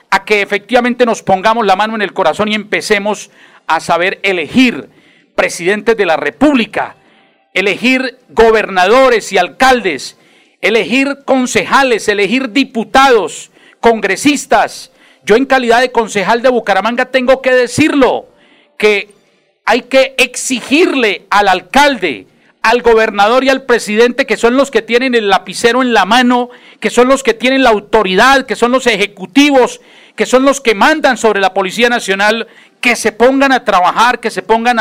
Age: 50-69